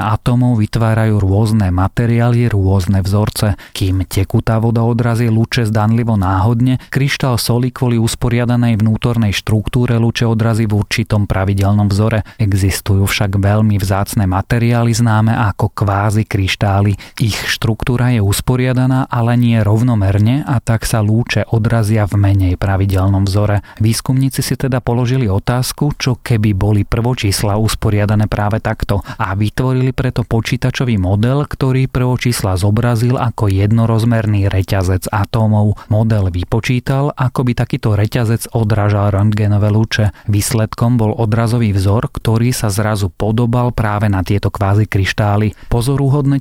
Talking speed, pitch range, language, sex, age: 125 wpm, 105-120 Hz, Slovak, male, 30-49